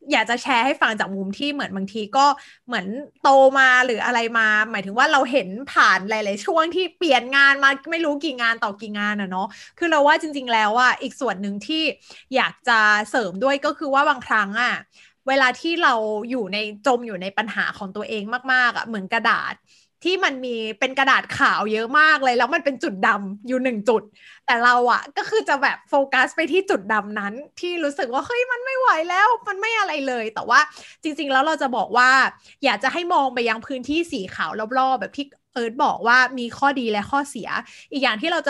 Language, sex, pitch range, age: Thai, female, 225-295 Hz, 20-39